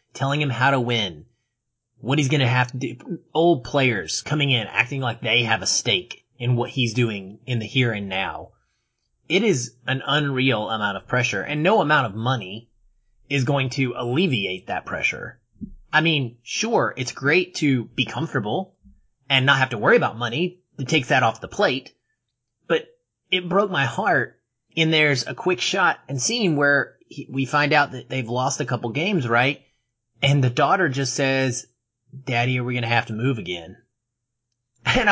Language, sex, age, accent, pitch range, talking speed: English, male, 30-49, American, 120-155 Hz, 185 wpm